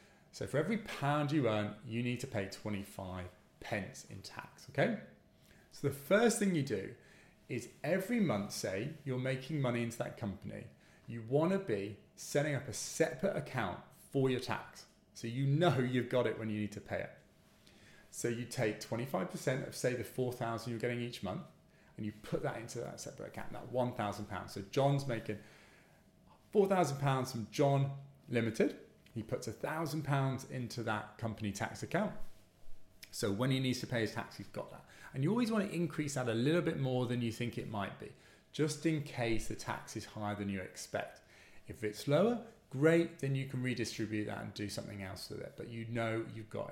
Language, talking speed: English, 195 wpm